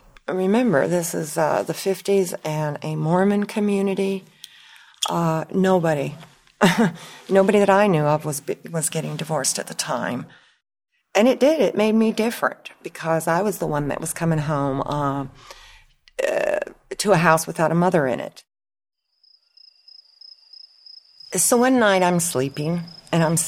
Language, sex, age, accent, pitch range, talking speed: English, female, 40-59, American, 150-195 Hz, 145 wpm